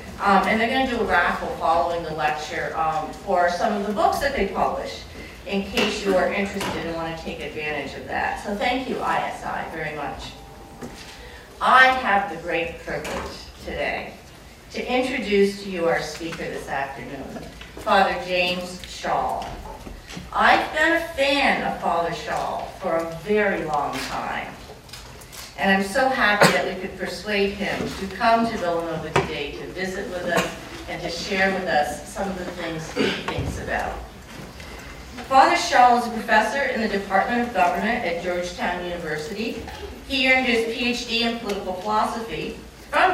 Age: 40-59